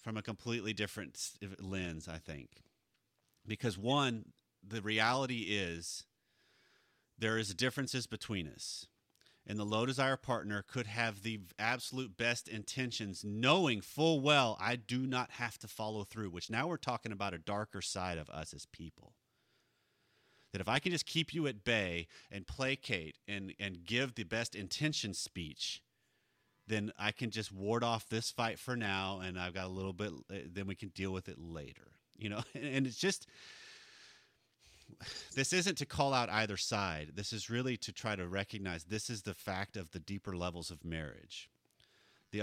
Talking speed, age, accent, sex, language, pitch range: 170 wpm, 30-49, American, male, English, 95-125 Hz